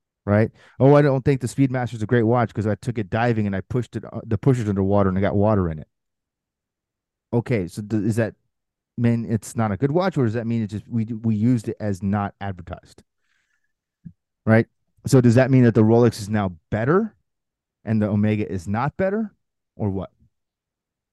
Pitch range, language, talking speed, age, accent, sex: 100-125 Hz, English, 205 wpm, 30-49, American, male